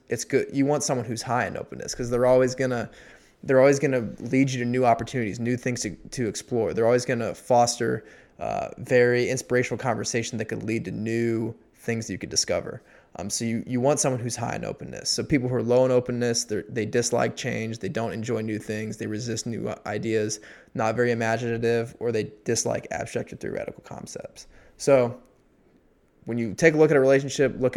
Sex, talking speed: male, 200 wpm